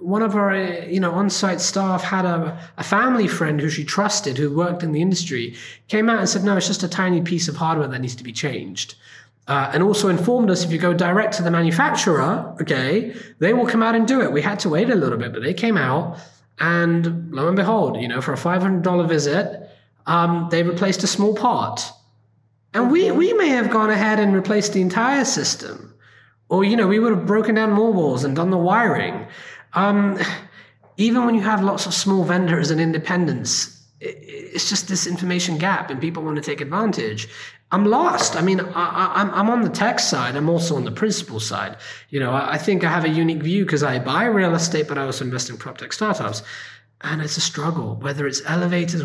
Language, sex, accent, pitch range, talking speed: English, male, British, 150-205 Hz, 220 wpm